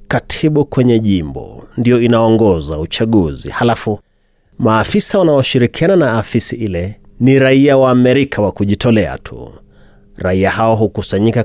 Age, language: 30-49, Swahili